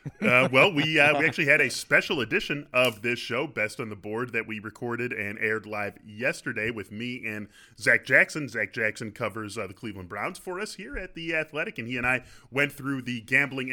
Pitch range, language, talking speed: 110-135 Hz, English, 220 wpm